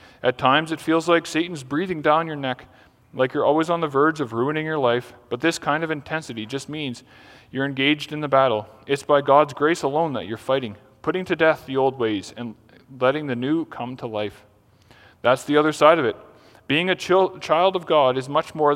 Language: English